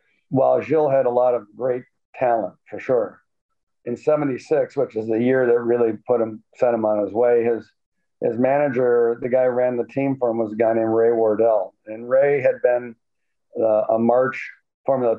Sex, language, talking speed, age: male, English, 200 wpm, 50-69